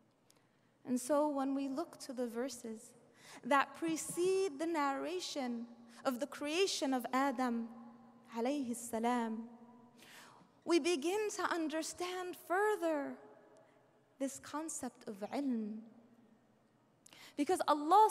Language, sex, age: English, female, 20-39